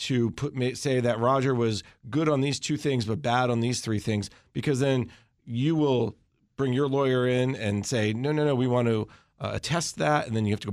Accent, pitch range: American, 115-145 Hz